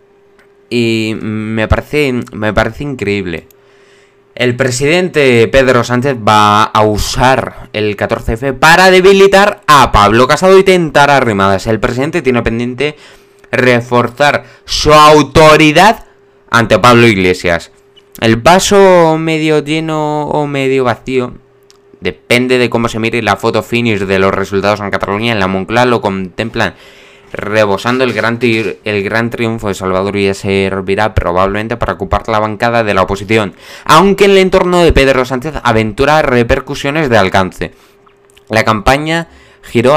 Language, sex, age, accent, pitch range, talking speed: Spanish, male, 20-39, Spanish, 105-135 Hz, 140 wpm